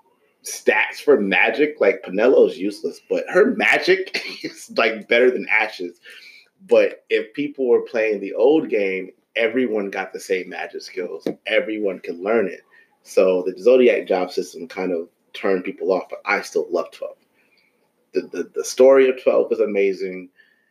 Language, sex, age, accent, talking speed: English, male, 30-49, American, 160 wpm